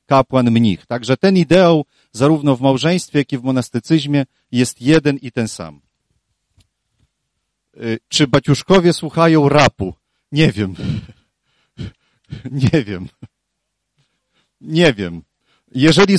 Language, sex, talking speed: Polish, male, 105 wpm